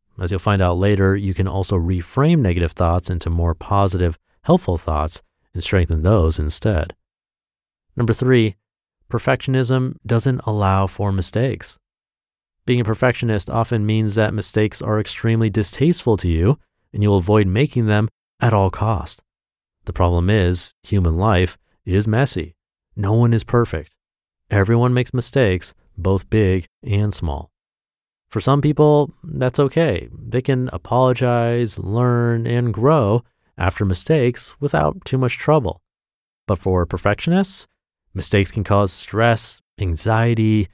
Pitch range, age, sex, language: 95-125 Hz, 30-49, male, English